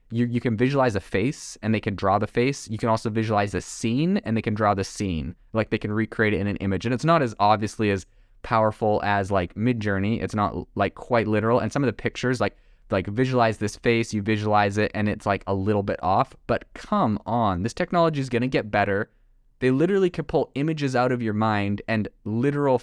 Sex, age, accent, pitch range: male, 20-39, American, 100-125 Hz